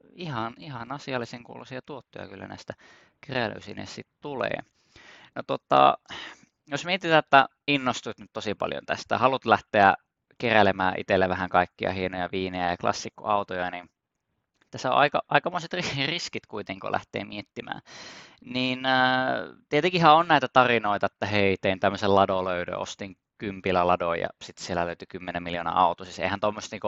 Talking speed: 135 wpm